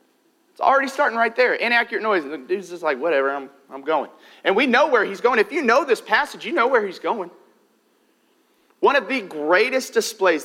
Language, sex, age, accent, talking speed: English, male, 40-59, American, 215 wpm